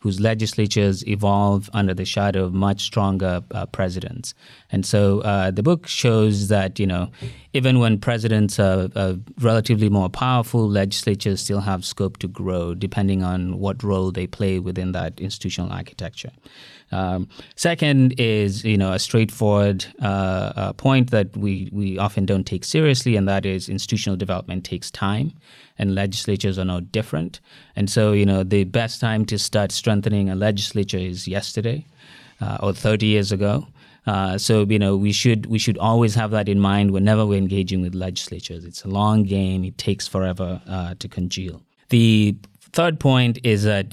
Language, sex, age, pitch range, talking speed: English, male, 30-49, 95-110 Hz, 170 wpm